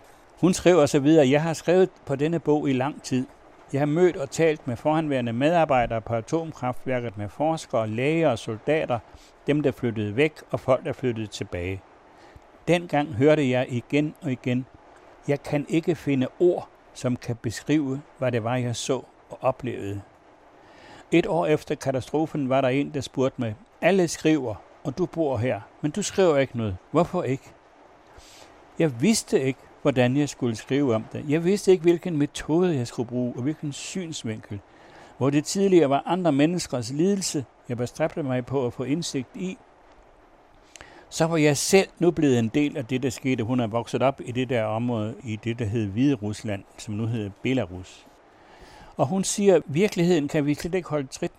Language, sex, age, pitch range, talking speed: Danish, male, 60-79, 125-160 Hz, 185 wpm